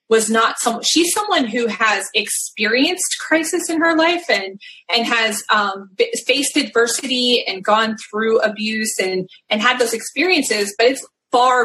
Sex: female